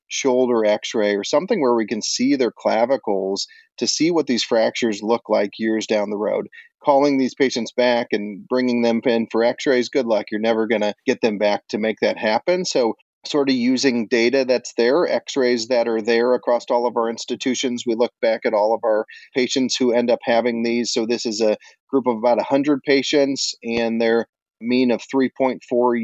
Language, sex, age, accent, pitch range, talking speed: English, male, 40-59, American, 110-135 Hz, 200 wpm